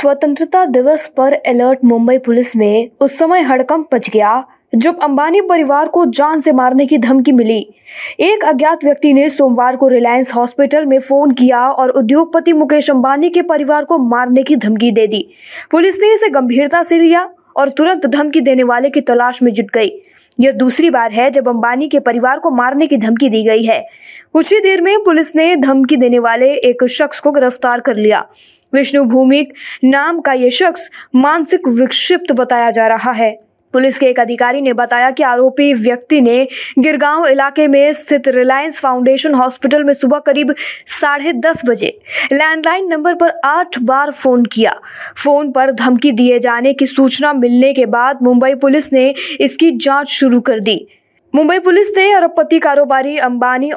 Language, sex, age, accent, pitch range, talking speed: Hindi, female, 20-39, native, 250-305 Hz, 175 wpm